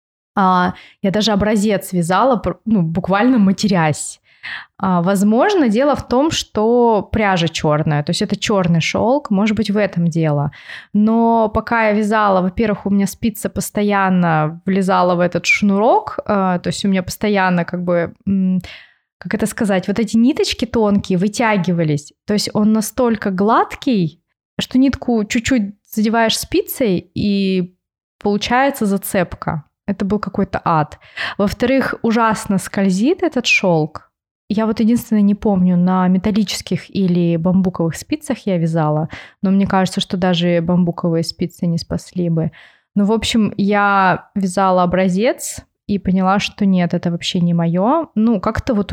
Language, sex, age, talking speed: Russian, female, 20-39, 140 wpm